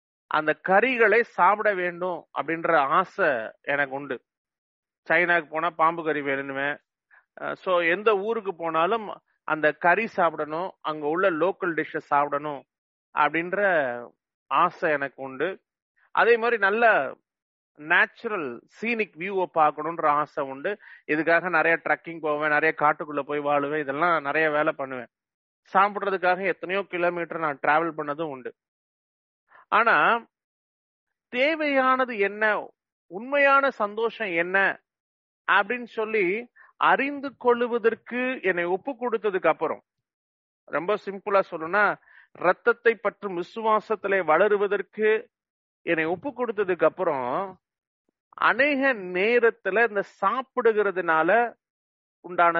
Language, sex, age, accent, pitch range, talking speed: English, male, 30-49, Indian, 155-220 Hz, 95 wpm